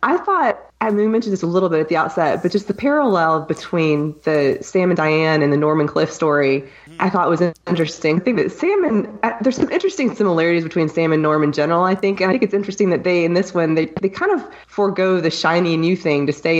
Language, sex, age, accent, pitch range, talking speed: English, female, 20-39, American, 155-190 Hz, 250 wpm